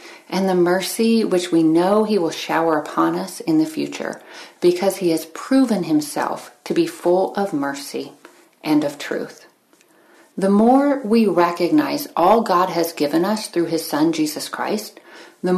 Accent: American